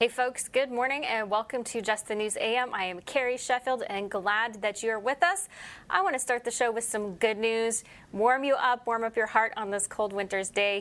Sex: female